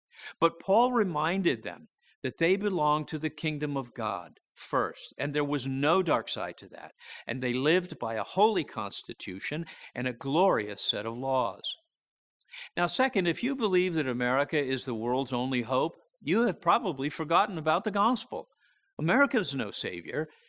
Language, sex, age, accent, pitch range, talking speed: English, male, 50-69, American, 130-195 Hz, 165 wpm